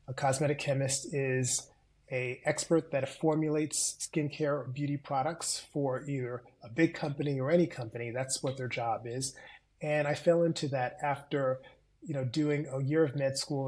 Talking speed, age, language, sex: 170 wpm, 30-49, English, male